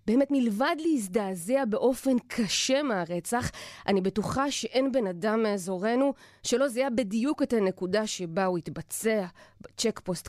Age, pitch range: 30-49, 190-250 Hz